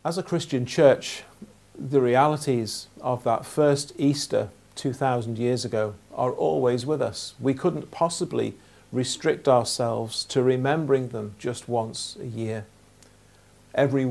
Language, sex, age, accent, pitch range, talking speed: English, male, 50-69, British, 110-140 Hz, 130 wpm